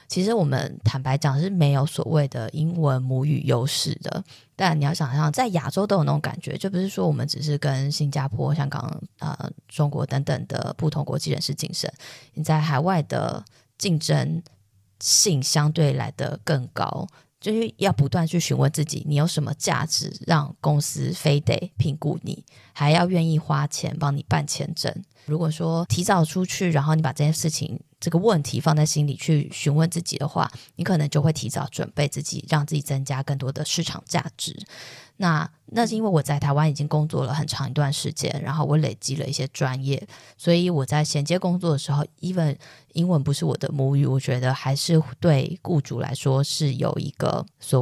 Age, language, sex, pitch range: 20-39, Chinese, female, 140-165 Hz